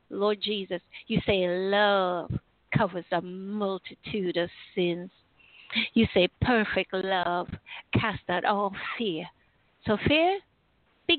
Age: 50-69